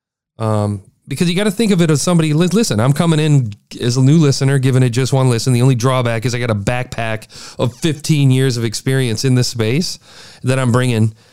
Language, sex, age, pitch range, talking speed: English, male, 30-49, 115-150 Hz, 225 wpm